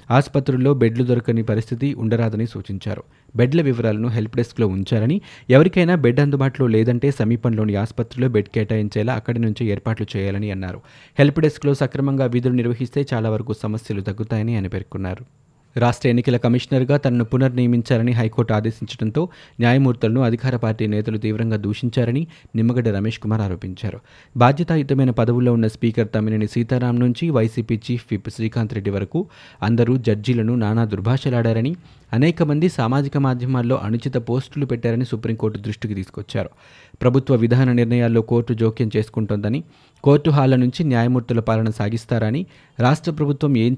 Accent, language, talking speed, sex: native, Telugu, 125 wpm, male